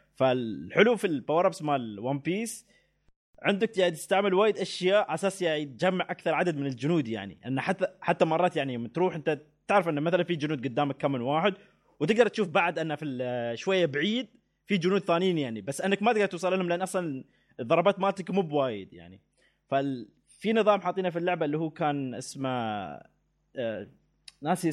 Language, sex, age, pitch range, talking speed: Arabic, male, 20-39, 135-185 Hz, 165 wpm